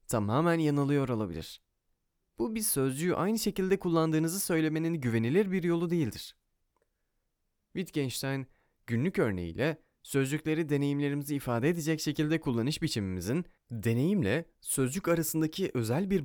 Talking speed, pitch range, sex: 105 wpm, 110-165 Hz, male